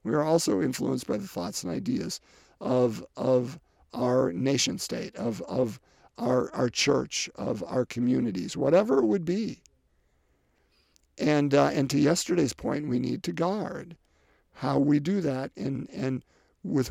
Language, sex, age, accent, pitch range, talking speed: English, male, 50-69, American, 100-160 Hz, 155 wpm